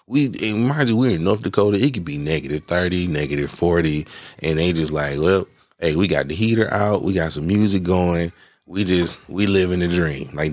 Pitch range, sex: 80-115 Hz, male